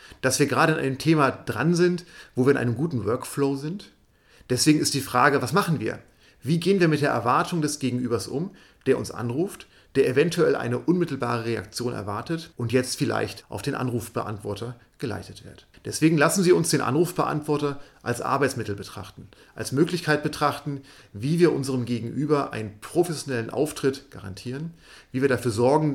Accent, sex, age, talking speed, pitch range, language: German, male, 40-59, 165 wpm, 120-150 Hz, German